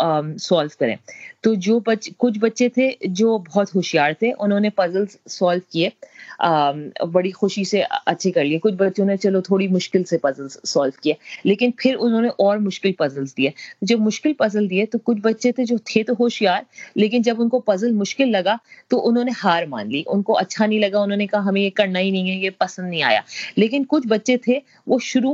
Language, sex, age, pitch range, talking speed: Urdu, female, 30-49, 190-245 Hz, 185 wpm